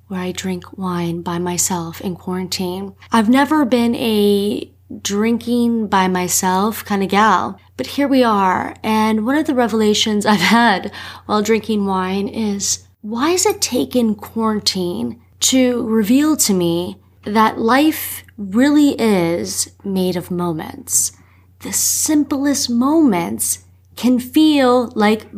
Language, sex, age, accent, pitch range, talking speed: English, female, 20-39, American, 185-250 Hz, 130 wpm